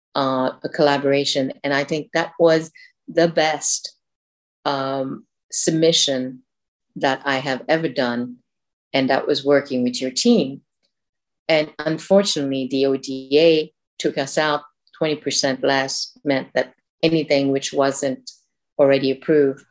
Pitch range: 135-165 Hz